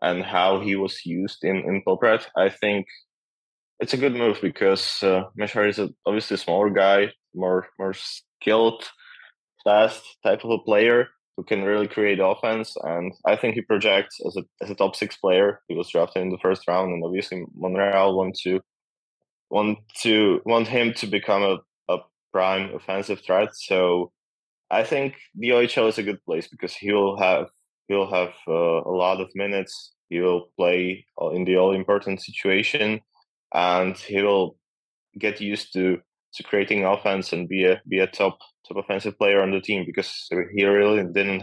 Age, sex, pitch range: 20-39, male, 95-105 Hz